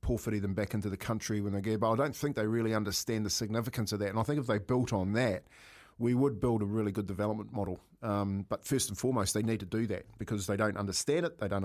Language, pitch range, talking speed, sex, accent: English, 105-120 Hz, 270 wpm, male, Australian